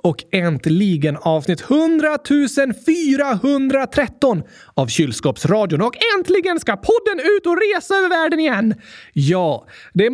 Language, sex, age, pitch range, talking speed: Swedish, male, 30-49, 195-300 Hz, 120 wpm